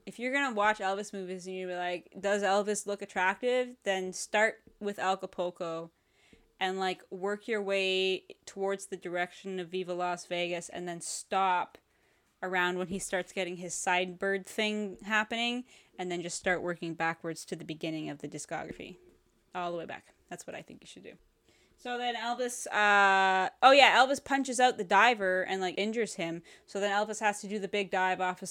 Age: 10-29